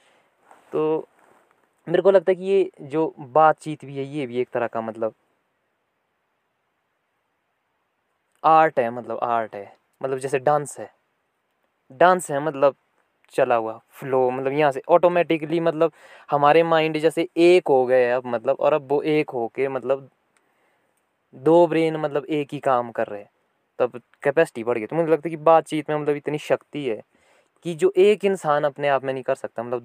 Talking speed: 175 wpm